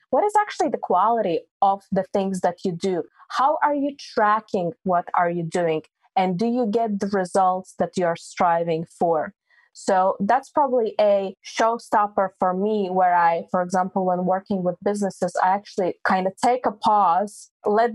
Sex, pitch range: female, 175-210 Hz